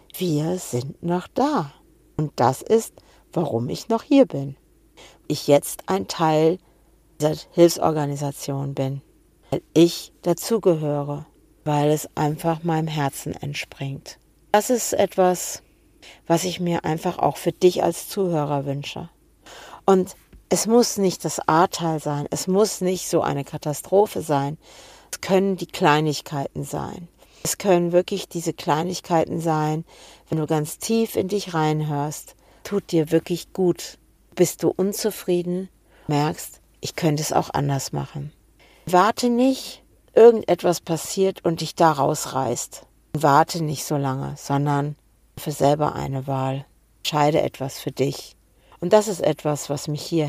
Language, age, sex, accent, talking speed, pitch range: German, 50-69, female, German, 135 wpm, 145-180 Hz